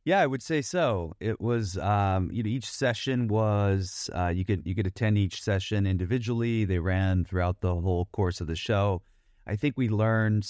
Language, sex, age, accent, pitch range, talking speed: English, male, 30-49, American, 95-110 Hz, 195 wpm